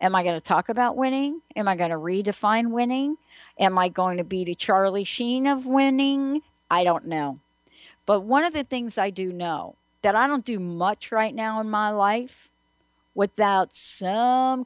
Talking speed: 190 wpm